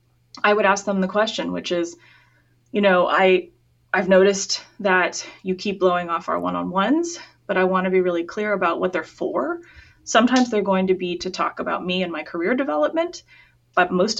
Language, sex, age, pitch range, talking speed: English, female, 30-49, 175-215 Hz, 205 wpm